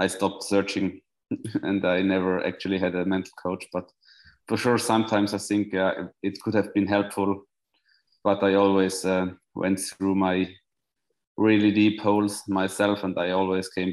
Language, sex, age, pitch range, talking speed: English, male, 20-39, 90-100 Hz, 165 wpm